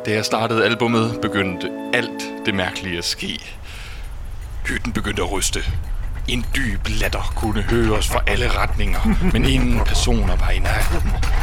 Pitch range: 90-110 Hz